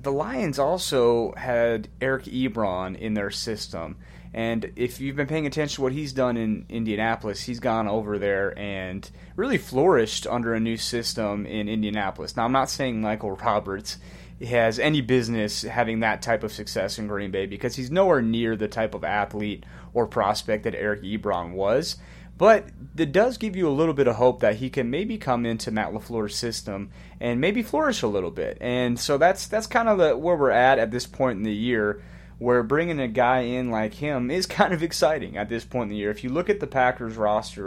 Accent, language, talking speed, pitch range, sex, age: American, English, 205 wpm, 105-130 Hz, male, 30-49